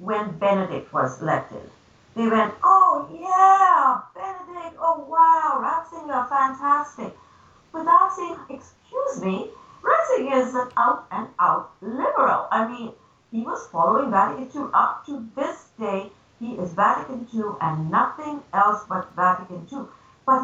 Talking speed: 135 wpm